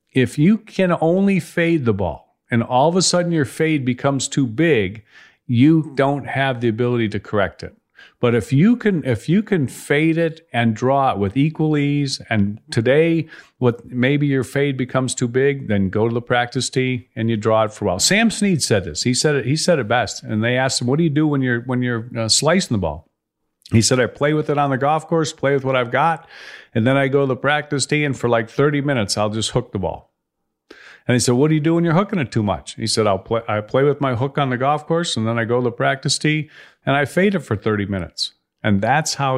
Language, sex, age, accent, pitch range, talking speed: English, male, 50-69, American, 115-150 Hz, 250 wpm